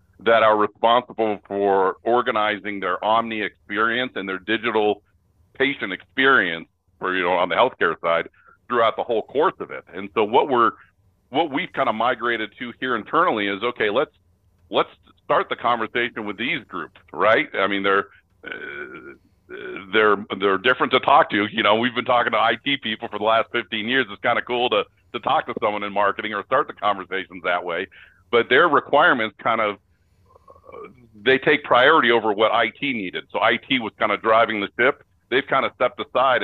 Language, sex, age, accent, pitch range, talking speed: English, male, 50-69, American, 100-120 Hz, 190 wpm